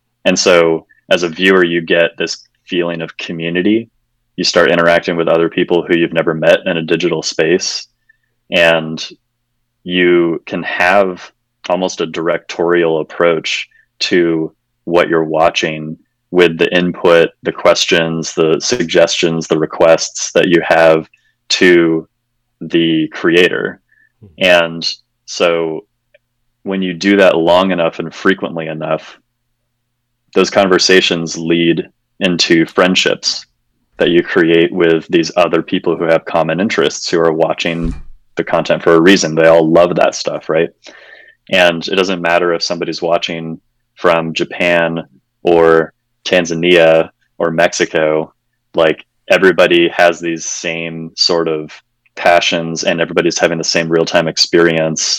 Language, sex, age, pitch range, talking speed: English, male, 30-49, 80-95 Hz, 135 wpm